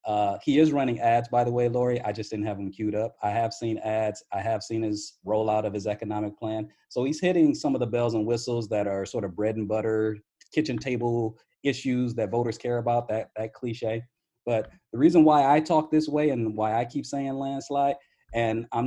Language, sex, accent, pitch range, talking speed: English, male, American, 110-130 Hz, 225 wpm